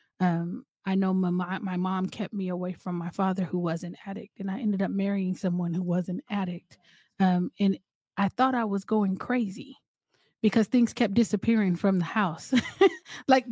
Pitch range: 185-220 Hz